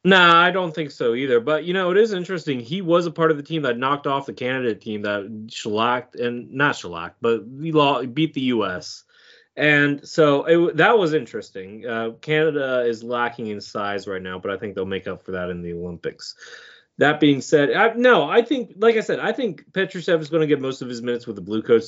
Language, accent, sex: English, American, male